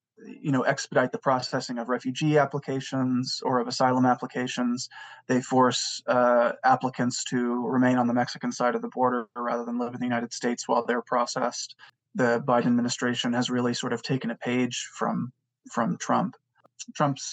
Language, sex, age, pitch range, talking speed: English, male, 20-39, 120-130 Hz, 170 wpm